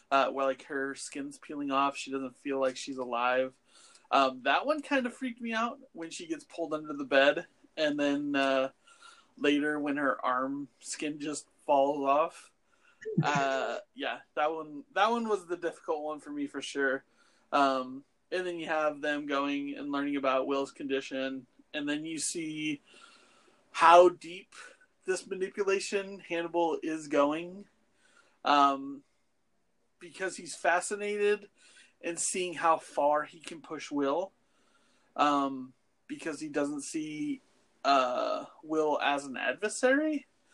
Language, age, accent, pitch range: English, 30-49, American, 140-200 Hz